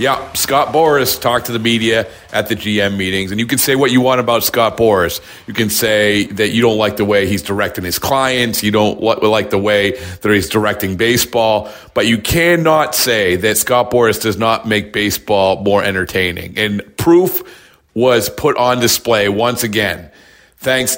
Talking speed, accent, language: 185 wpm, American, English